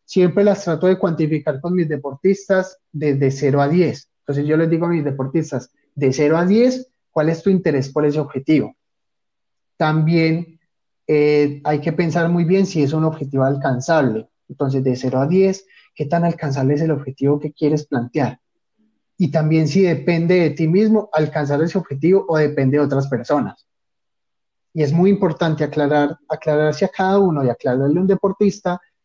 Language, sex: Spanish, male